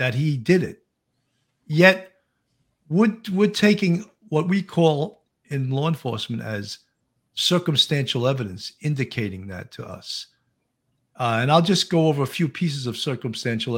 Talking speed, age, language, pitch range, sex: 140 wpm, 50-69, English, 115-155 Hz, male